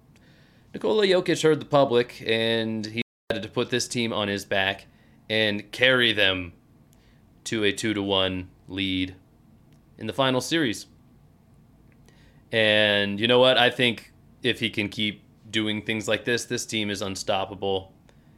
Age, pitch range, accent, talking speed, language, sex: 20-39, 100-120 Hz, American, 145 wpm, English, male